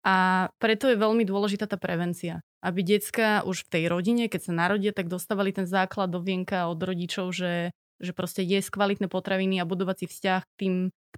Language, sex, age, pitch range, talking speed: Slovak, female, 20-39, 185-210 Hz, 195 wpm